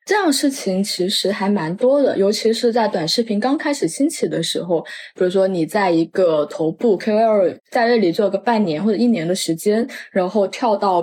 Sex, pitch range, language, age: female, 170-240 Hz, Chinese, 20-39